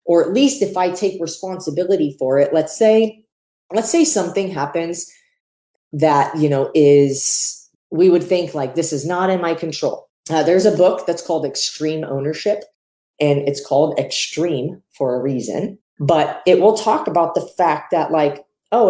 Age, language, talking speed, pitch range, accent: 30-49, English, 170 wpm, 145-190 Hz, American